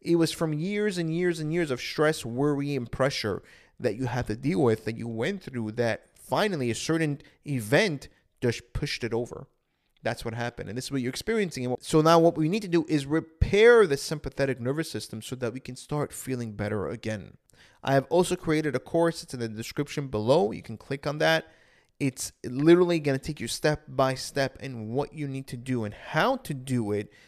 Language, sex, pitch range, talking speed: English, male, 120-160 Hz, 215 wpm